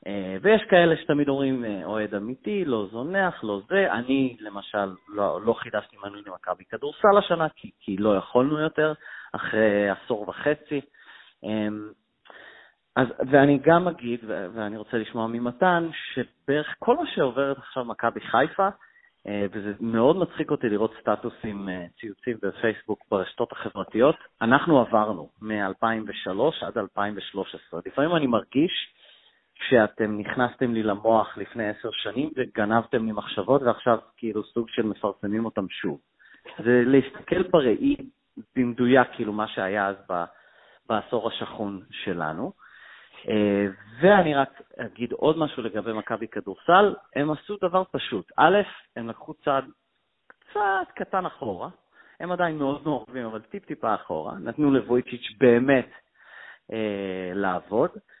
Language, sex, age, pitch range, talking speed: Hebrew, male, 30-49, 105-155 Hz, 125 wpm